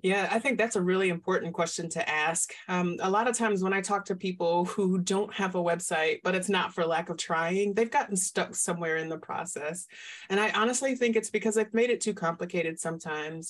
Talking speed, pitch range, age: 225 wpm, 175-220 Hz, 30-49